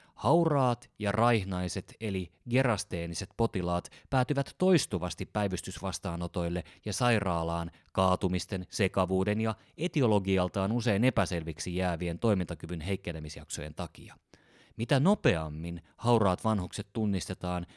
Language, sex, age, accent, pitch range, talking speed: Finnish, male, 30-49, native, 90-125 Hz, 90 wpm